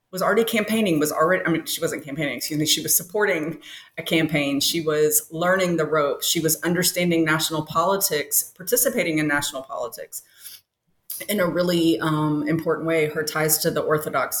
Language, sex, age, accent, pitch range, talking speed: English, female, 30-49, American, 150-185 Hz, 175 wpm